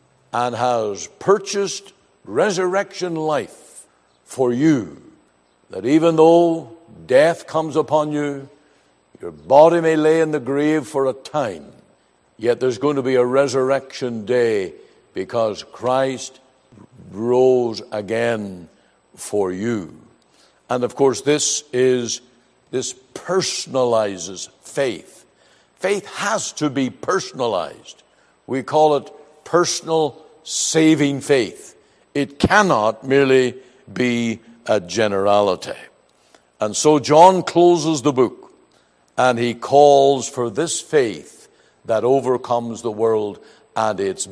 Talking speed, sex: 110 wpm, male